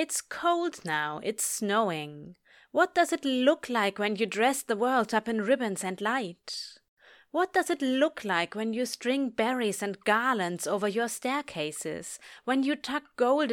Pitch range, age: 195-295 Hz, 30-49